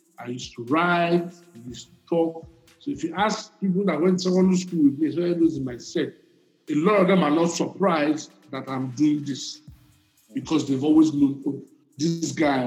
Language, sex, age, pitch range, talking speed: English, male, 50-69, 135-185 Hz, 205 wpm